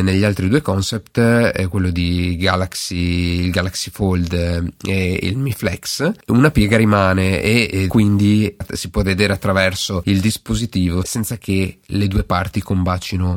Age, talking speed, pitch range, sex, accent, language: 30-49, 145 wpm, 95-110 Hz, male, native, Italian